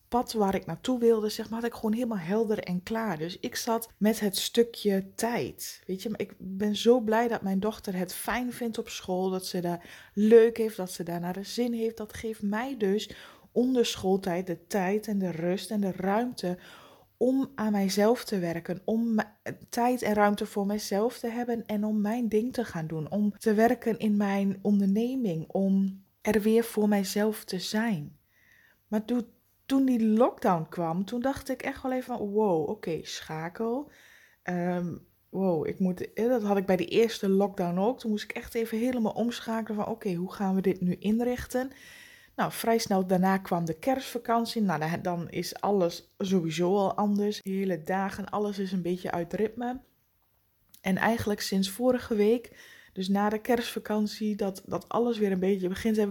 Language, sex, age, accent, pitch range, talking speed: Dutch, female, 20-39, Dutch, 190-230 Hz, 190 wpm